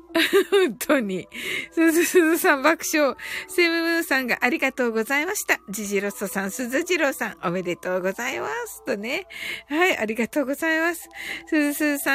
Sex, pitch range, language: female, 260-415 Hz, Japanese